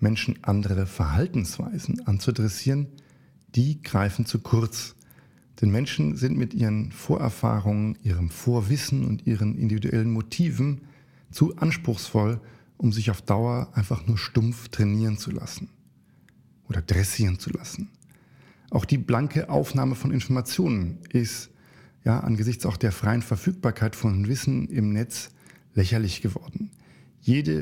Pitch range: 110-135 Hz